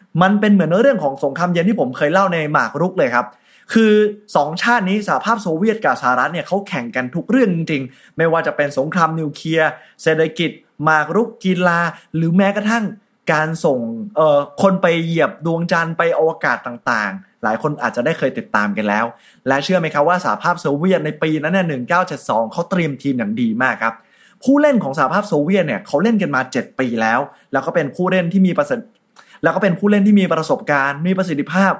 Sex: male